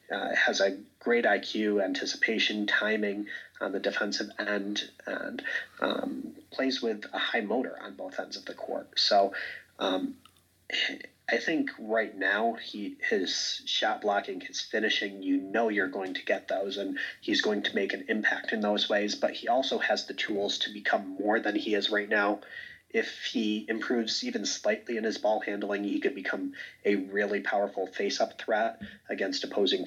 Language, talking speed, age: English, 175 wpm, 30-49